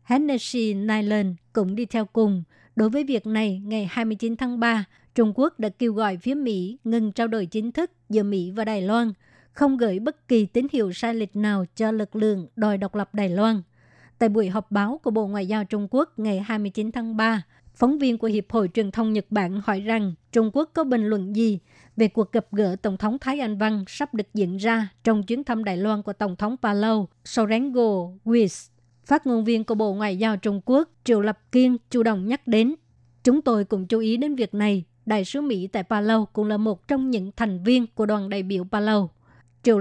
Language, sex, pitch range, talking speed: Vietnamese, male, 205-235 Hz, 220 wpm